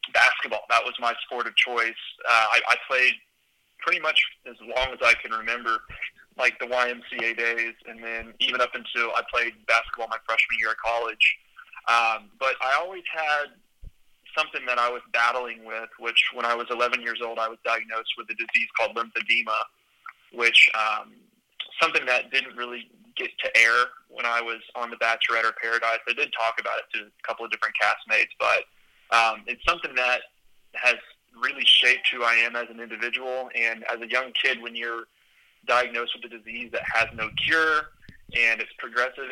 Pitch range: 115-130 Hz